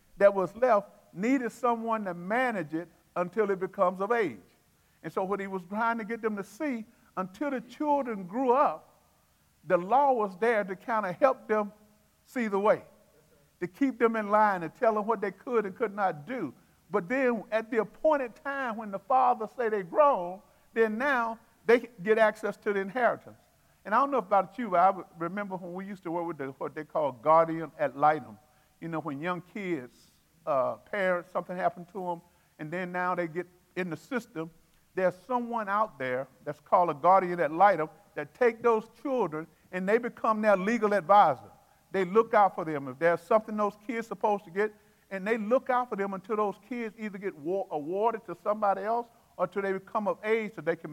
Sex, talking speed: male, 210 wpm